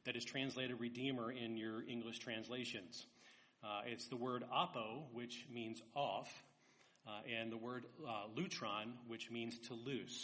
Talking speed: 150 wpm